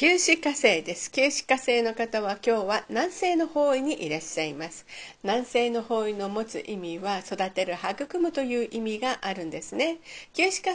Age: 50-69